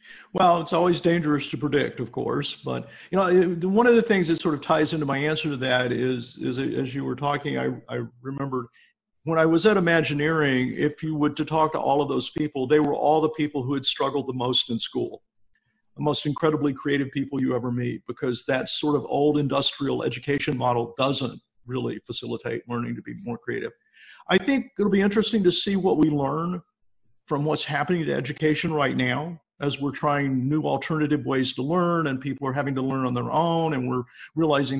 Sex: male